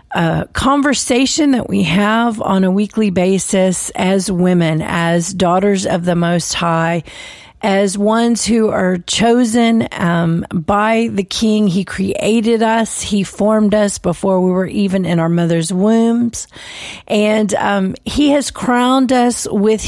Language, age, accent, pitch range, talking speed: English, 40-59, American, 190-230 Hz, 140 wpm